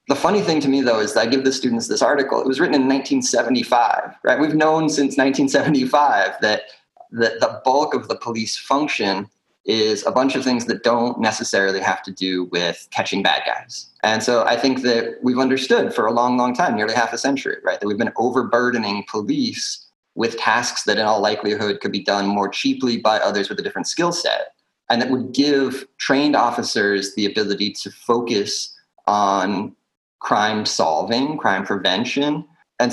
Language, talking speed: English, 190 wpm